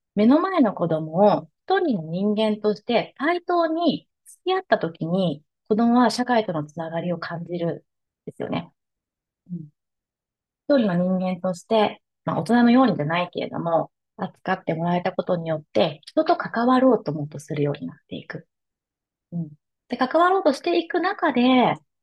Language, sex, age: Japanese, female, 30-49